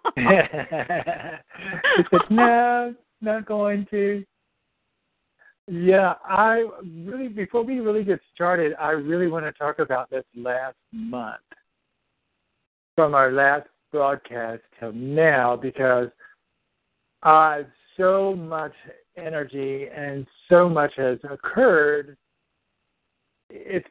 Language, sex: English, male